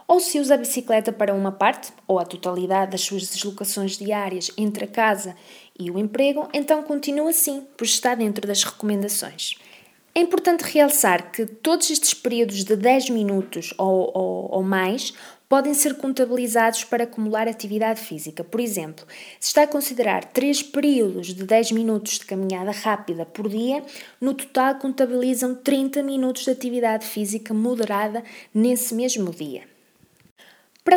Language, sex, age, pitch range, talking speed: Portuguese, female, 20-39, 195-265 Hz, 150 wpm